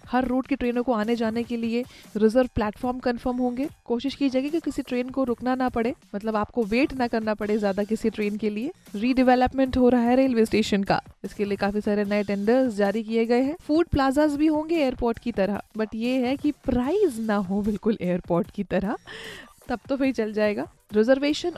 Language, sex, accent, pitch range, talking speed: Hindi, female, native, 215-260 Hz, 210 wpm